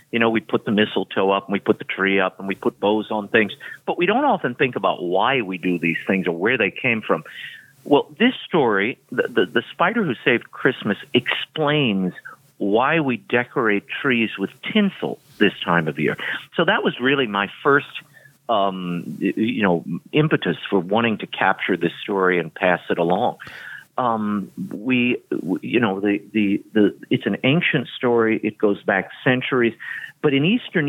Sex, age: male, 50-69